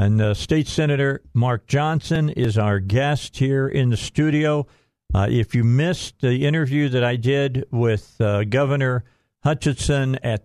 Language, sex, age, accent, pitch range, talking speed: English, male, 50-69, American, 110-130 Hz, 155 wpm